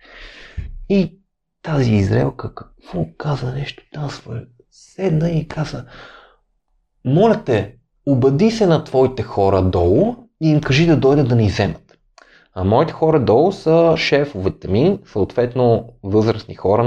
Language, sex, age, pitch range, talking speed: Bulgarian, male, 30-49, 95-125 Hz, 130 wpm